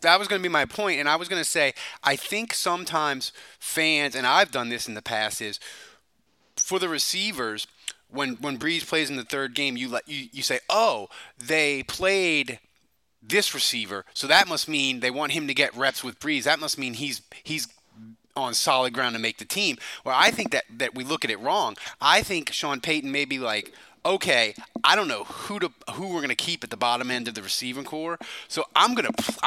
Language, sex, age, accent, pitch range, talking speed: English, male, 30-49, American, 125-160 Hz, 220 wpm